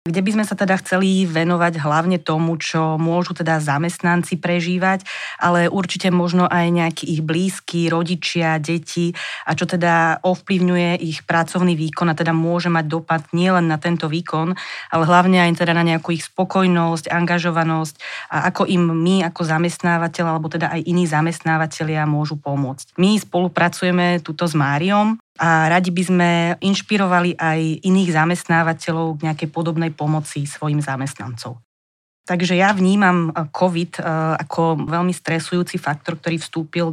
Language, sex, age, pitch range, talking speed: Slovak, female, 30-49, 160-180 Hz, 145 wpm